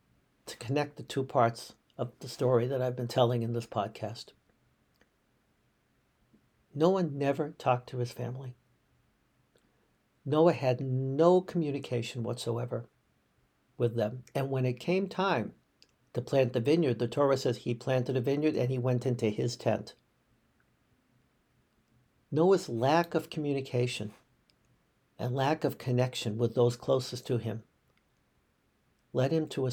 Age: 60-79